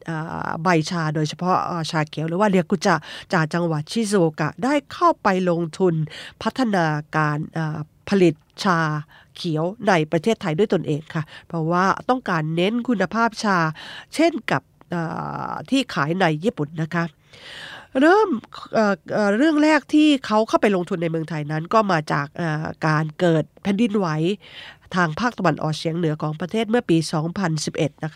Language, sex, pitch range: Japanese, female, 155-205 Hz